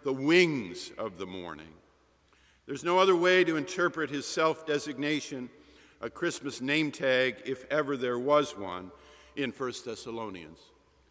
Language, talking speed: English, 135 wpm